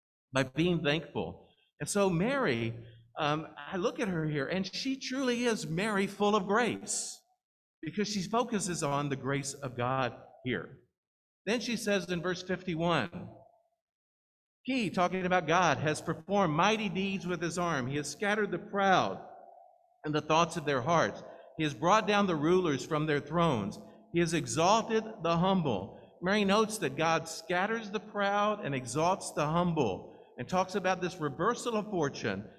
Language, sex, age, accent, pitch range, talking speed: English, male, 50-69, American, 160-215 Hz, 165 wpm